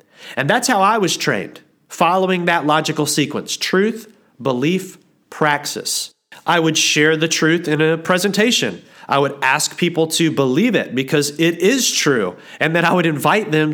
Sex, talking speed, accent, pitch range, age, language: male, 165 wpm, American, 145-185 Hz, 40-59, English